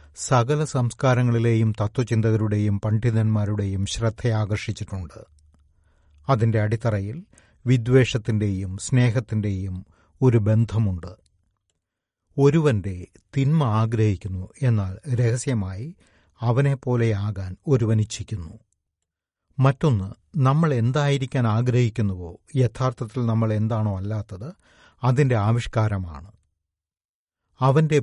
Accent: native